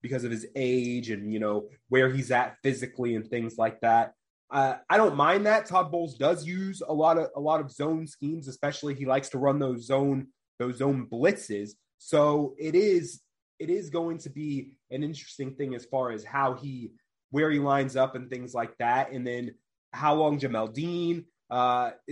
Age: 20-39